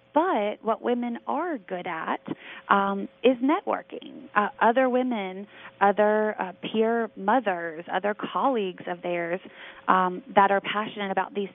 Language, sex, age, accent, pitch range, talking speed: English, female, 20-39, American, 185-230 Hz, 135 wpm